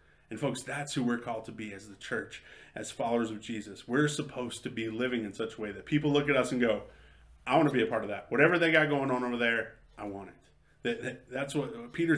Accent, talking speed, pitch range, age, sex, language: American, 265 wpm, 105-140 Hz, 30-49, male, English